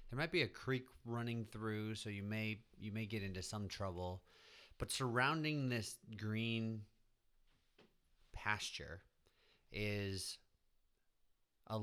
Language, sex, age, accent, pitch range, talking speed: English, male, 30-49, American, 95-115 Hz, 115 wpm